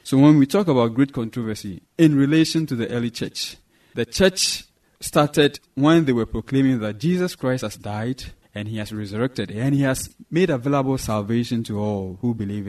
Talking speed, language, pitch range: 185 wpm, English, 110-140 Hz